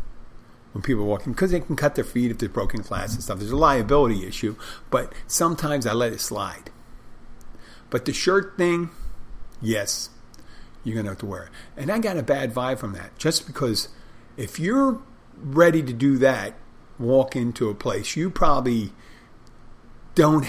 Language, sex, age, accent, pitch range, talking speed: English, male, 50-69, American, 110-140 Hz, 180 wpm